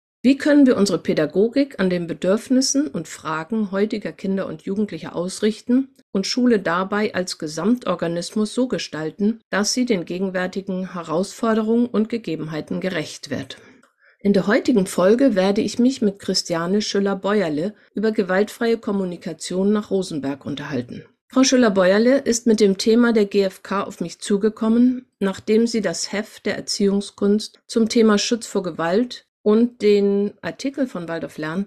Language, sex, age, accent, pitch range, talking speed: German, female, 50-69, German, 185-230 Hz, 140 wpm